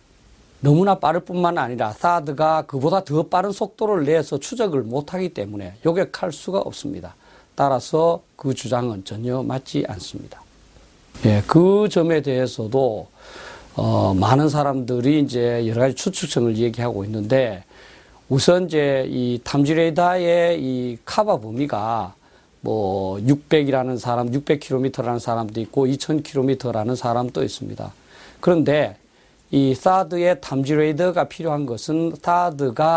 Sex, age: male, 40-59